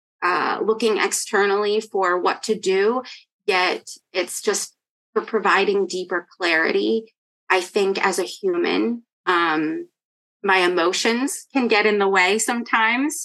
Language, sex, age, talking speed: English, female, 20-39, 125 wpm